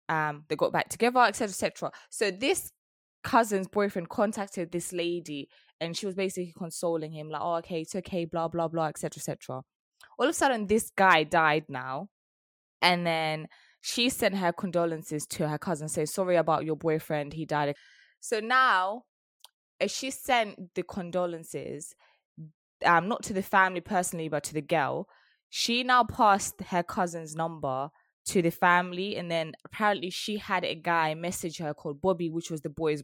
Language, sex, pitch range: English, female, 160-195 Hz